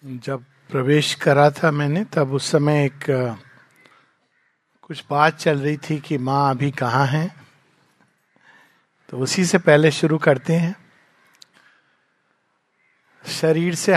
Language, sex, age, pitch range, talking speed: Hindi, male, 50-69, 150-210 Hz, 120 wpm